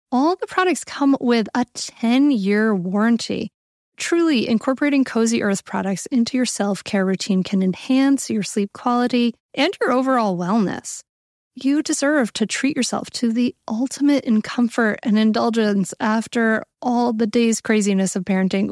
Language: English